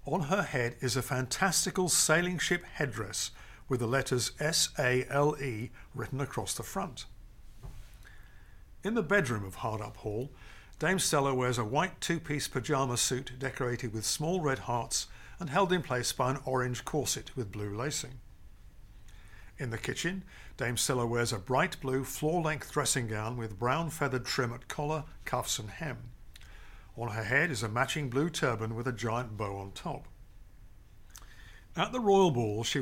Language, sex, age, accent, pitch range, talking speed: English, male, 50-69, British, 110-145 Hz, 160 wpm